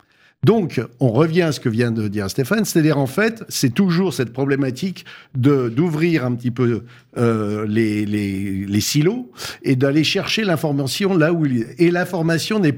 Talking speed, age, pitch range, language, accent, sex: 180 wpm, 50-69, 125-170 Hz, French, French, male